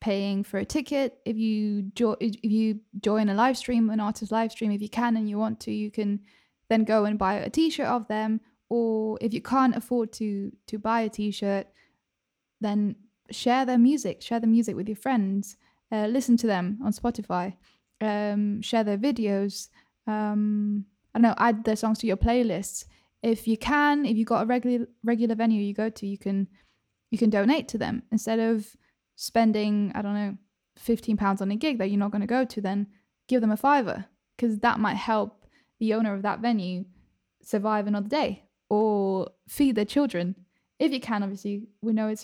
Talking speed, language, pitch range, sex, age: 200 wpm, English, 200-230 Hz, female, 10-29